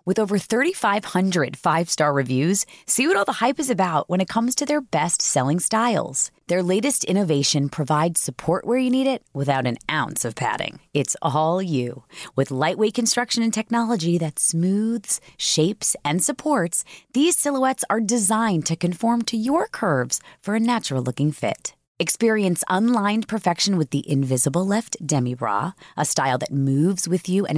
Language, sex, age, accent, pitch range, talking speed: English, female, 30-49, American, 150-235 Hz, 165 wpm